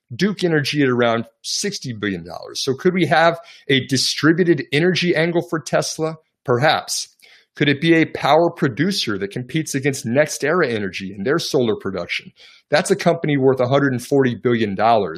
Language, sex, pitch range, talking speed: English, male, 115-160 Hz, 155 wpm